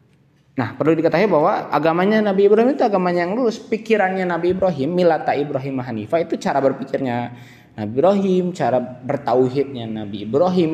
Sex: male